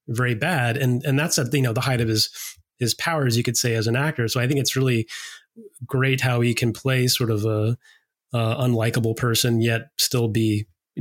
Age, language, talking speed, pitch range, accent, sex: 30-49, English, 220 wpm, 115-145 Hz, American, male